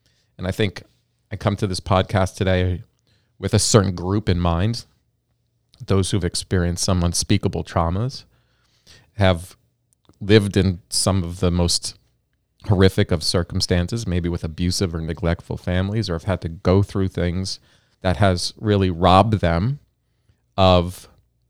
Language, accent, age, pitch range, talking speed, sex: English, American, 40-59, 90-115 Hz, 140 wpm, male